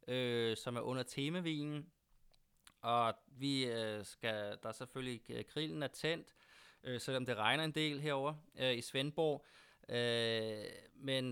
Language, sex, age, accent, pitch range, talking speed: Danish, male, 20-39, native, 115-135 Hz, 140 wpm